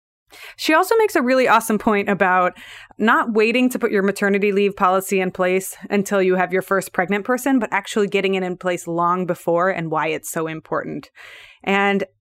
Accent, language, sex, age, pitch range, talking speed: American, English, female, 20-39, 180-230 Hz, 190 wpm